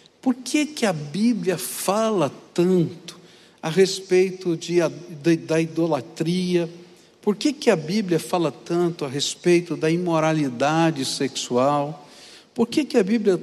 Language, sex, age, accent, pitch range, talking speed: English, male, 60-79, Brazilian, 145-195 Hz, 135 wpm